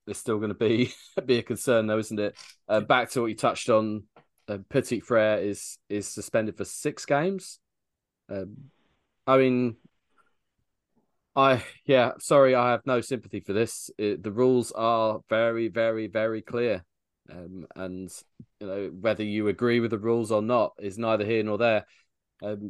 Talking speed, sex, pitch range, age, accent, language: 170 wpm, male, 95-115 Hz, 20-39, British, English